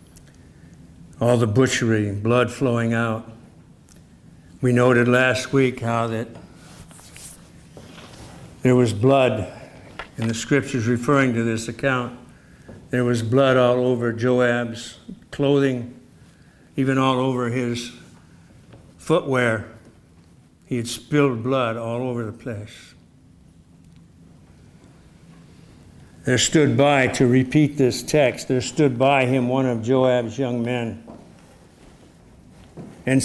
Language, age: English, 60-79